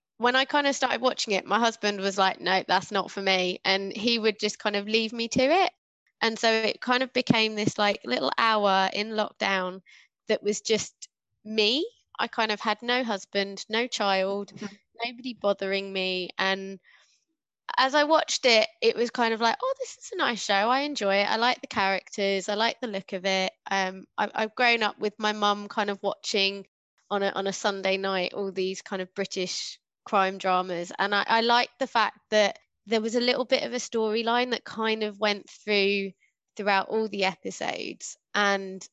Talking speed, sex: 200 wpm, female